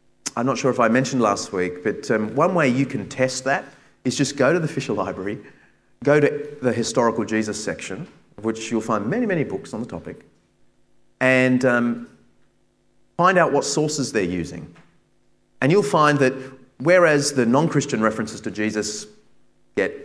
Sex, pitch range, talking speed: male, 110-160 Hz, 170 wpm